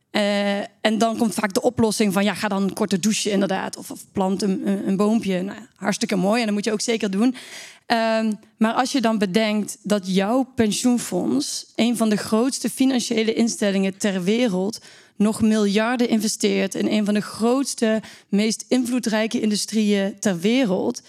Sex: female